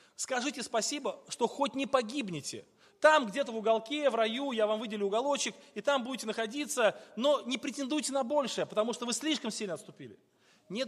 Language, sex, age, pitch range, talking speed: Russian, male, 30-49, 200-255 Hz, 175 wpm